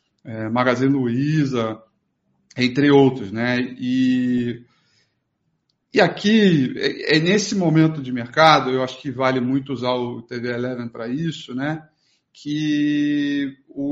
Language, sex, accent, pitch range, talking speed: Portuguese, male, Brazilian, 130-155 Hz, 115 wpm